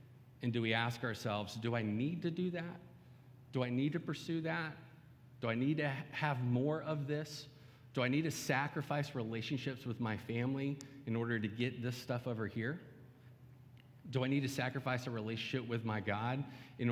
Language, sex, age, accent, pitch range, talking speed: English, male, 40-59, American, 115-140 Hz, 190 wpm